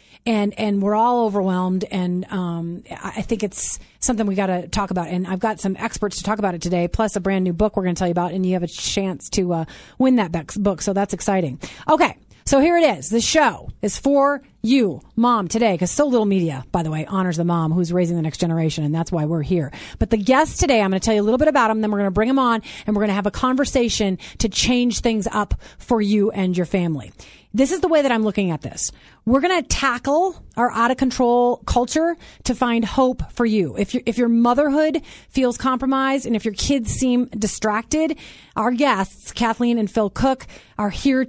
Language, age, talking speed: English, 30-49, 235 wpm